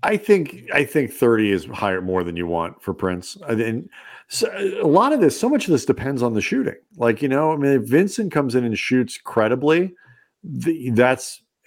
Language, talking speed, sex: English, 215 wpm, male